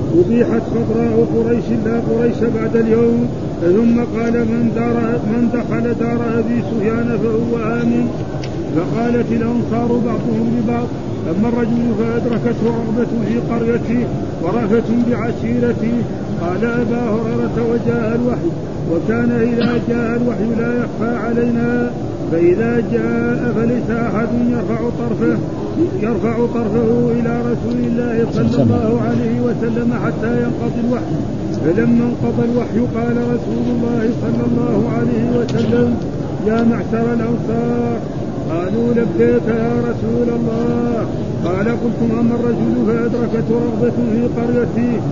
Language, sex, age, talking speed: Arabic, male, 50-69, 115 wpm